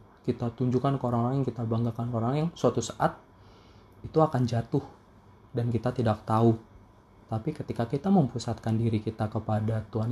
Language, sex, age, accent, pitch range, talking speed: Indonesian, male, 30-49, native, 100-125 Hz, 160 wpm